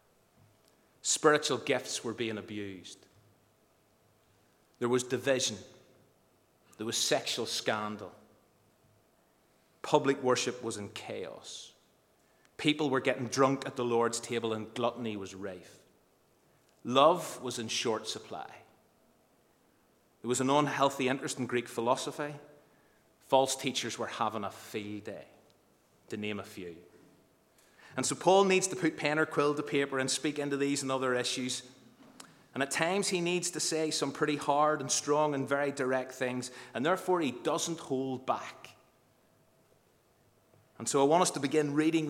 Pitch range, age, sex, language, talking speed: 120-145 Hz, 30-49, male, English, 145 wpm